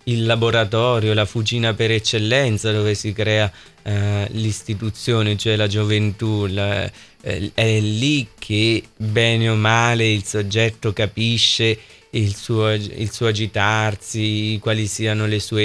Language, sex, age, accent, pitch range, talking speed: Italian, male, 20-39, native, 105-115 Hz, 130 wpm